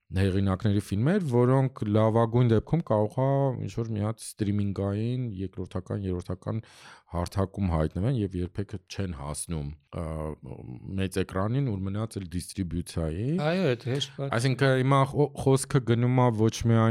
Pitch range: 95-120 Hz